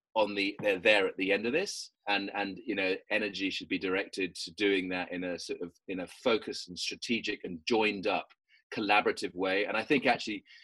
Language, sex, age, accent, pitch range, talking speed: English, male, 30-49, British, 90-115 Hz, 215 wpm